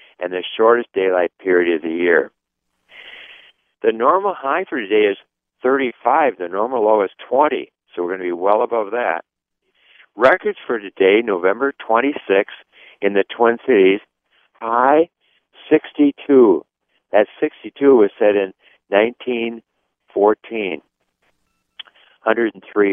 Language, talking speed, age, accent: English, 120 wpm, 60-79, American